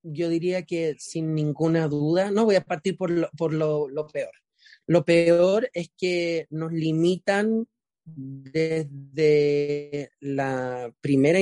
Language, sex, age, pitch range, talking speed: Spanish, male, 30-49, 155-195 Hz, 130 wpm